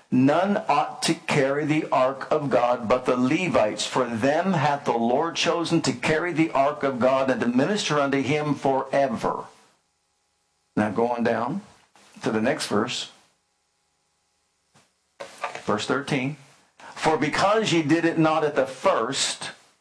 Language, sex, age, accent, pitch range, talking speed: English, male, 60-79, American, 125-160 Hz, 145 wpm